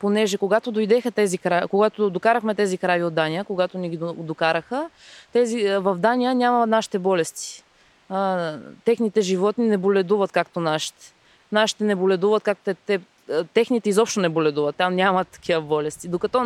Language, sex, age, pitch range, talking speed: Bulgarian, female, 20-39, 180-215 Hz, 150 wpm